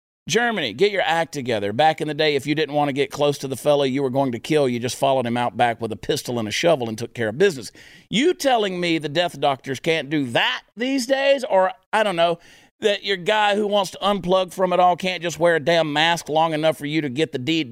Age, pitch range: 50-69, 145-220 Hz